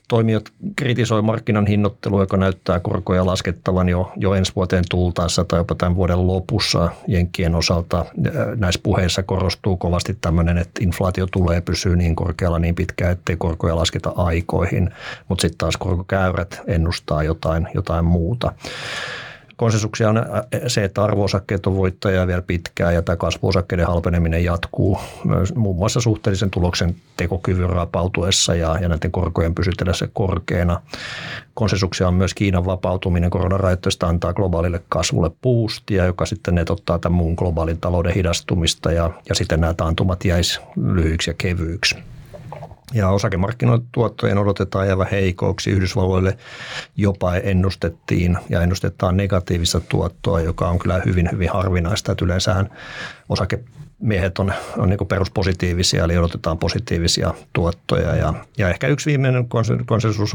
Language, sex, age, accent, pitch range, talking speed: Finnish, male, 50-69, native, 85-100 Hz, 130 wpm